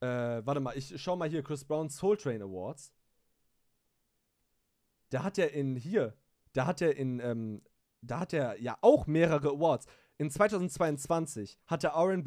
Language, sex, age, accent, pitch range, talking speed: German, male, 30-49, German, 130-175 Hz, 150 wpm